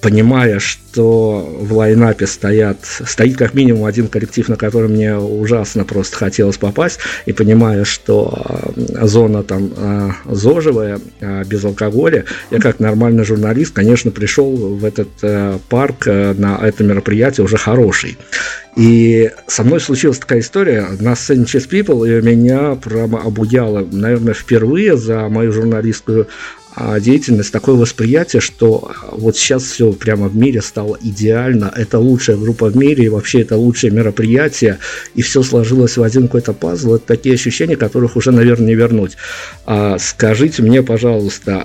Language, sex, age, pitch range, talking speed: Russian, male, 50-69, 105-120 Hz, 145 wpm